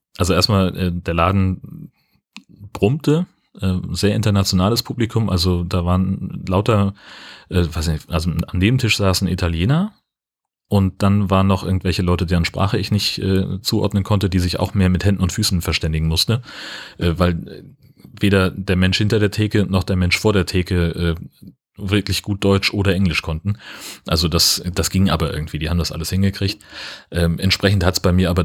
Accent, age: German, 30-49